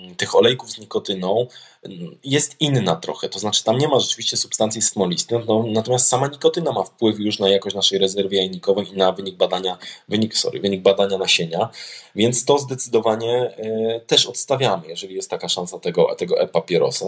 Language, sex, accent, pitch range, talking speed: Polish, male, native, 105-165 Hz, 170 wpm